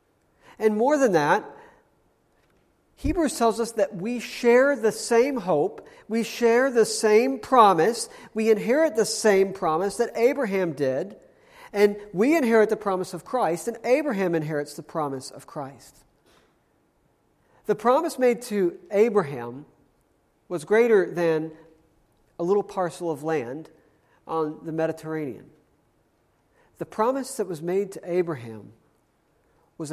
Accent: American